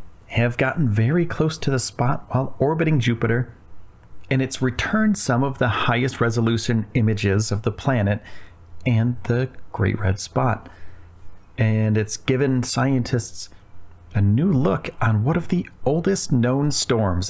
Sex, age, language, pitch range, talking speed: male, 40-59, English, 95-135 Hz, 140 wpm